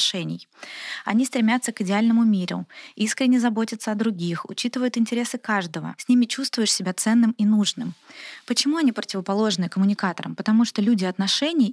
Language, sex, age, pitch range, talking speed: Russian, female, 20-39, 190-230 Hz, 140 wpm